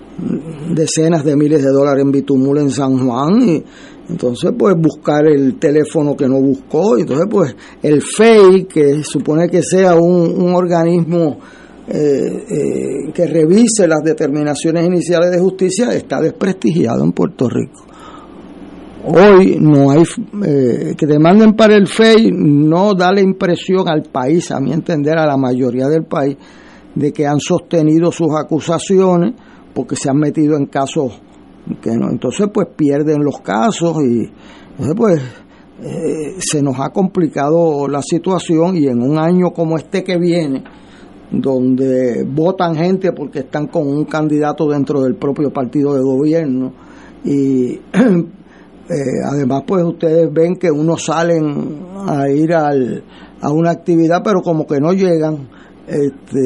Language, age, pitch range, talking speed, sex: Spanish, 50-69, 140-175 Hz, 150 wpm, male